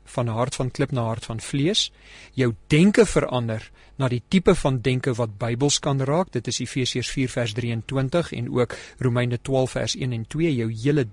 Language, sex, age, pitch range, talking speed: English, male, 40-59, 125-160 Hz, 195 wpm